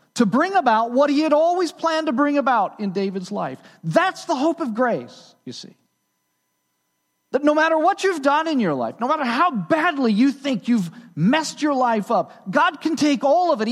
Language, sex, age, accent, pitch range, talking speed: English, male, 40-59, American, 225-315 Hz, 205 wpm